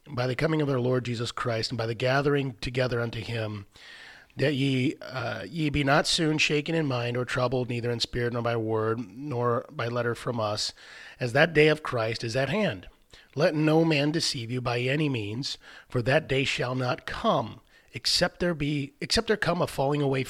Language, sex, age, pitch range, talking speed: English, male, 30-49, 120-150 Hz, 205 wpm